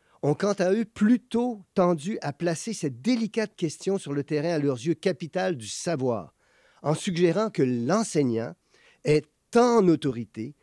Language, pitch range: French, 125-185 Hz